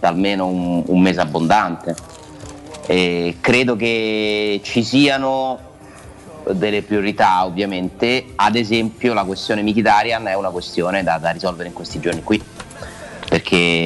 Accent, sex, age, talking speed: native, male, 30-49, 120 wpm